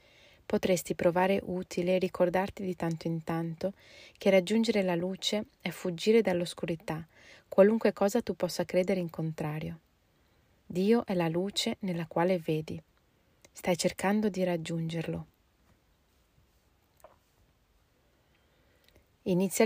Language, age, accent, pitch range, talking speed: Italian, 30-49, native, 165-195 Hz, 105 wpm